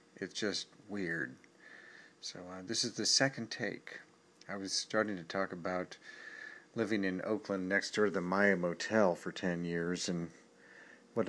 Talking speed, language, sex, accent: 160 wpm, English, male, American